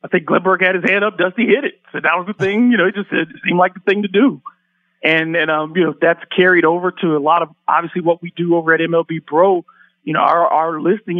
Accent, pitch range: American, 160-185 Hz